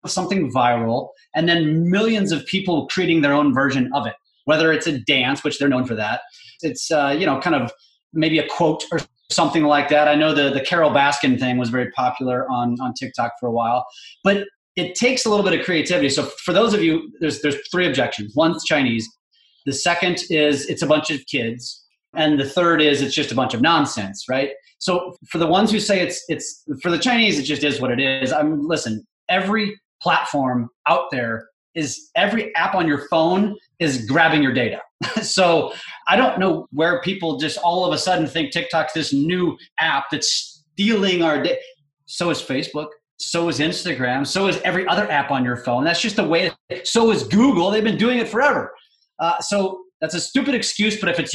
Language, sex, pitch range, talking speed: English, male, 140-180 Hz, 210 wpm